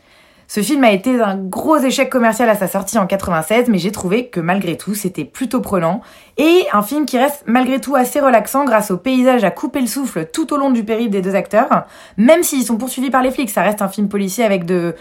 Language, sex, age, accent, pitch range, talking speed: French, female, 20-39, French, 190-245 Hz, 240 wpm